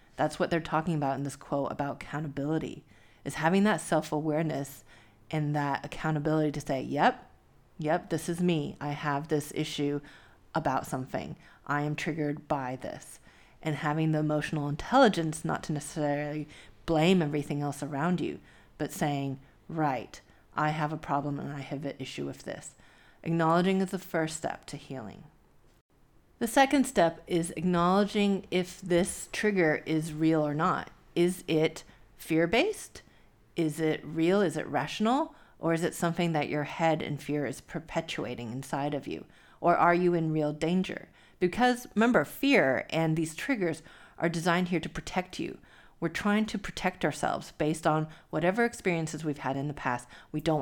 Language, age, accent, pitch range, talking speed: English, 30-49, American, 145-175 Hz, 165 wpm